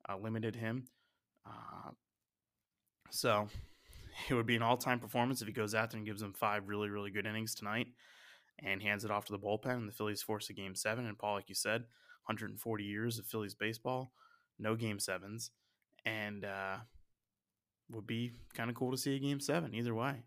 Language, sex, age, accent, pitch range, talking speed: English, male, 20-39, American, 105-120 Hz, 200 wpm